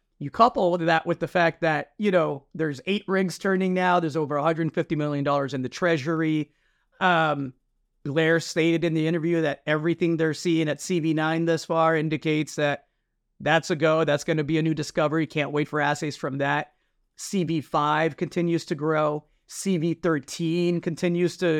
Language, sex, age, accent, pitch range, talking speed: English, male, 30-49, American, 150-180 Hz, 165 wpm